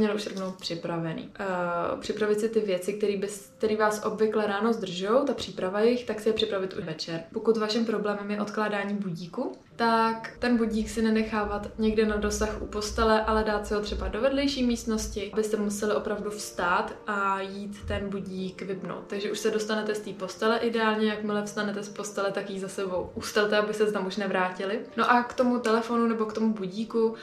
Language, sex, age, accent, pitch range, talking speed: Czech, female, 20-39, native, 200-220 Hz, 195 wpm